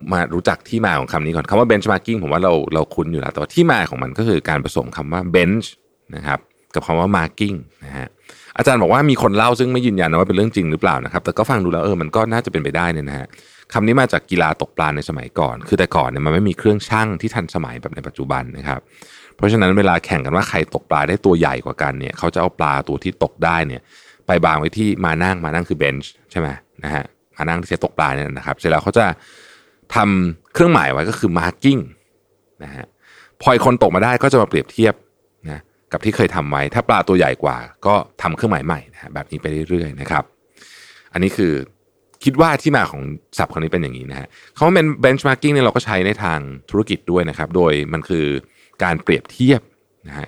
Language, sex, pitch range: Thai, male, 75-110 Hz